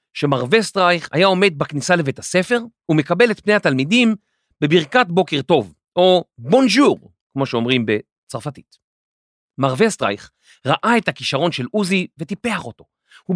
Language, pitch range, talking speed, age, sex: Hebrew, 135-205 Hz, 135 wpm, 40-59, male